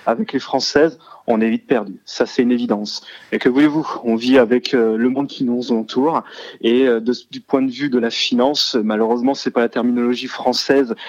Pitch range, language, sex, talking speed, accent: 120-155 Hz, French, male, 200 wpm, French